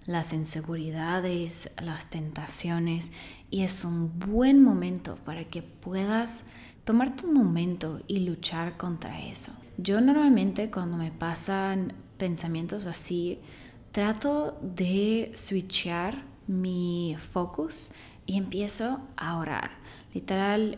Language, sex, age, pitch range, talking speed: Spanish, female, 20-39, 170-210 Hz, 105 wpm